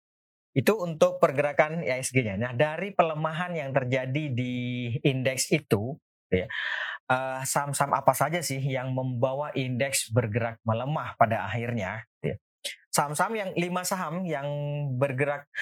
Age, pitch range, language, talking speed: 20-39, 115-150 Hz, Indonesian, 125 wpm